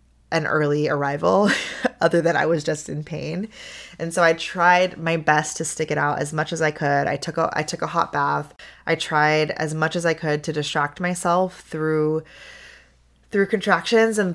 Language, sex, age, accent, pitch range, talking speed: English, female, 20-39, American, 145-170 Hz, 195 wpm